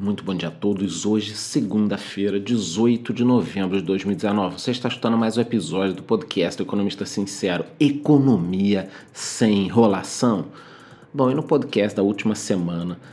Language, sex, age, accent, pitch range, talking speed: Portuguese, male, 40-59, Brazilian, 100-120 Hz, 150 wpm